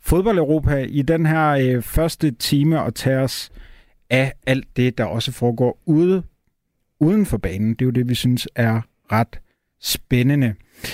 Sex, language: male, Danish